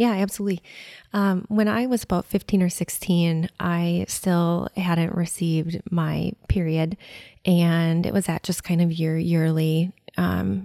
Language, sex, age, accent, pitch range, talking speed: English, female, 20-39, American, 160-185 Hz, 145 wpm